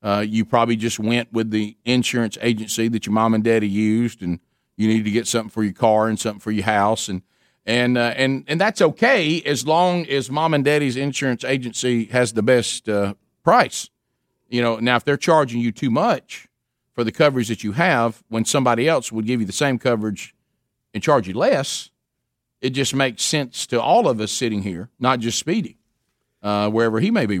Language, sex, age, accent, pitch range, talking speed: English, male, 50-69, American, 110-135 Hz, 210 wpm